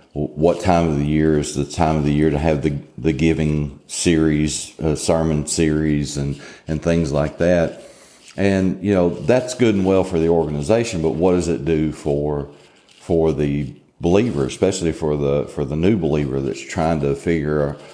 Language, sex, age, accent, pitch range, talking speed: English, male, 40-59, American, 75-85 Hz, 185 wpm